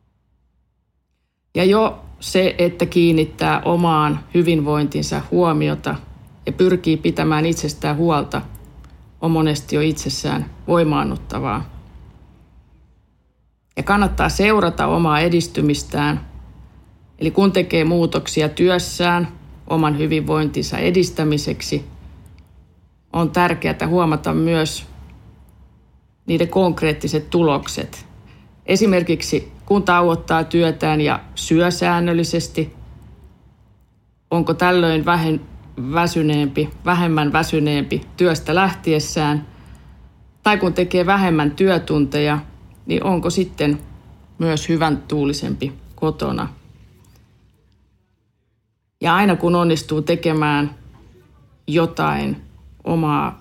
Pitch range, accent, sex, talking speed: 135-170 Hz, native, female, 80 wpm